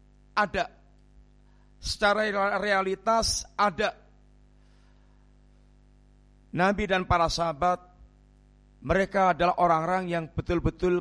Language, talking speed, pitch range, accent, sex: Indonesian, 70 wpm, 145-200 Hz, native, male